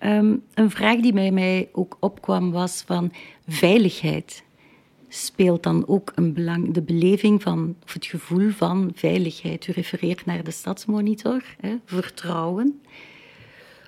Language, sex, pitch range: Dutch, female, 170-210 Hz